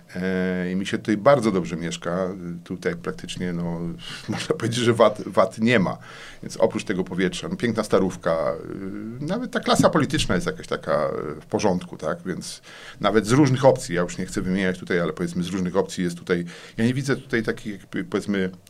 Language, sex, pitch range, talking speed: Polish, male, 95-140 Hz, 195 wpm